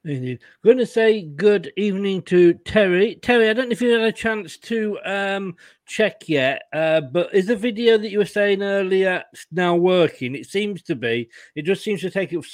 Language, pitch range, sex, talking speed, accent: English, 150-195 Hz, male, 205 wpm, British